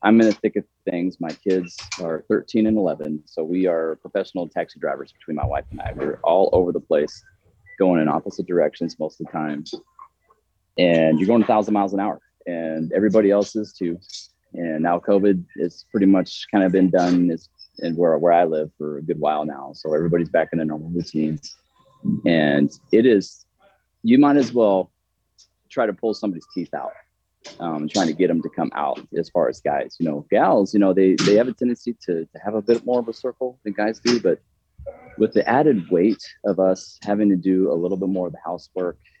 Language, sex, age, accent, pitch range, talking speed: English, male, 30-49, American, 80-105 Hz, 215 wpm